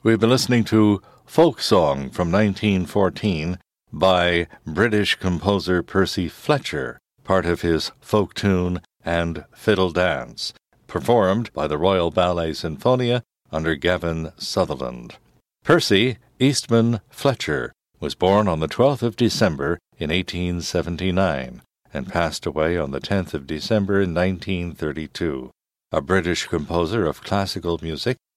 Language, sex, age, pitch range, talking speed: English, male, 60-79, 85-110 Hz, 125 wpm